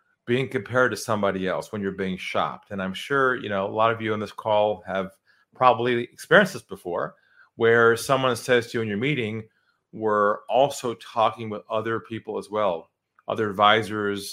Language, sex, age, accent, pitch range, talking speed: English, male, 40-59, American, 105-125 Hz, 185 wpm